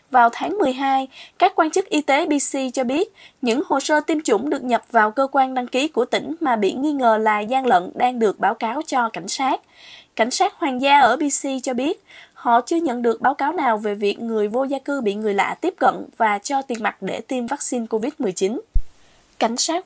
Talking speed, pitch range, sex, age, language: 225 wpm, 235-300 Hz, female, 20-39, Vietnamese